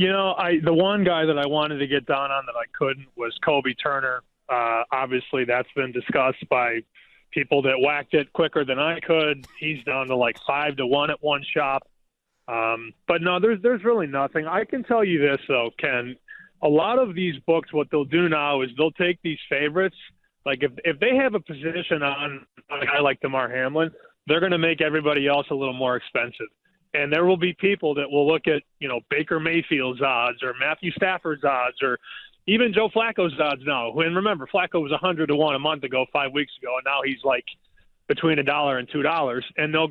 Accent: American